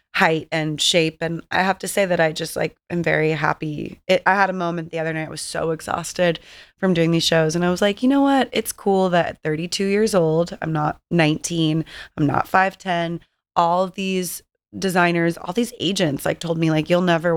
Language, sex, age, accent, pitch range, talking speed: English, female, 20-39, American, 155-175 Hz, 215 wpm